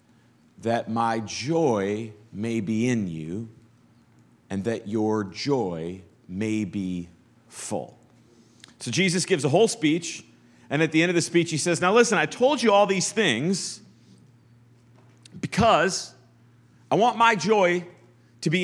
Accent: American